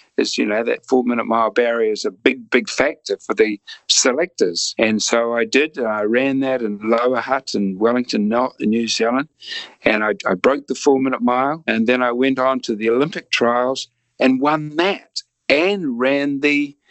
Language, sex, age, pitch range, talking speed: English, male, 60-79, 115-140 Hz, 185 wpm